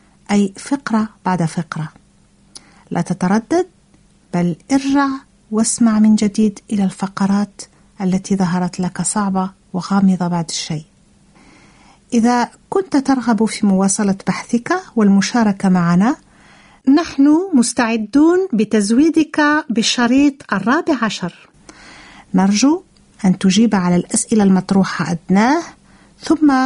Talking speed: 85 wpm